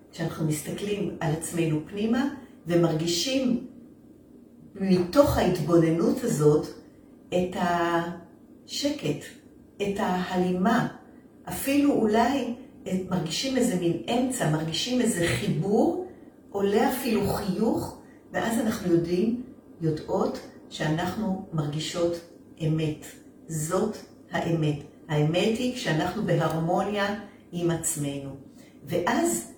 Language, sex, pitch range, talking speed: Hebrew, female, 170-250 Hz, 85 wpm